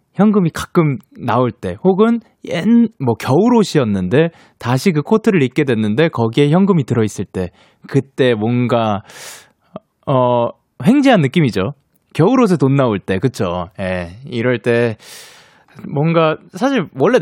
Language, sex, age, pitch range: Korean, male, 20-39, 115-190 Hz